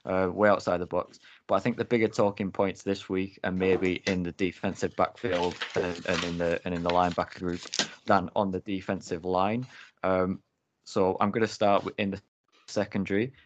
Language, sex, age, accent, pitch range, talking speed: English, male, 20-39, British, 85-100 Hz, 190 wpm